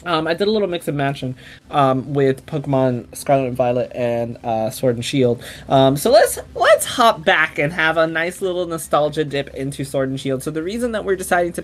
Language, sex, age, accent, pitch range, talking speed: English, male, 20-39, American, 135-175 Hz, 215 wpm